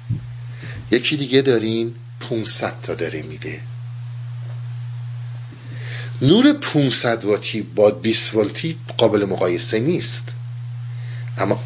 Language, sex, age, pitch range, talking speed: Persian, male, 50-69, 115-125 Hz, 85 wpm